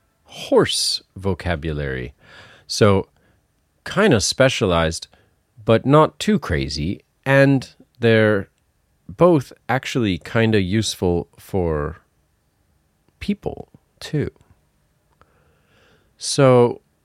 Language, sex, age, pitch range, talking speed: English, male, 40-59, 85-115 Hz, 75 wpm